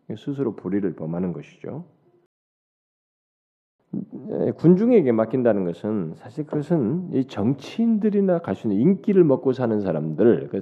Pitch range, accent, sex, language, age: 130-200 Hz, native, male, Korean, 40-59